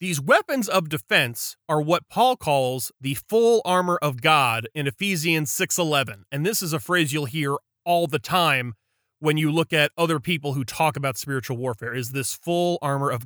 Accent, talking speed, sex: American, 190 wpm, male